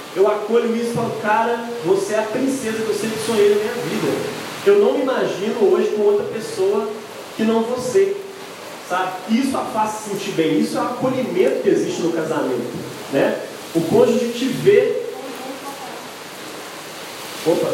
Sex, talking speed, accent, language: male, 170 wpm, Brazilian, Portuguese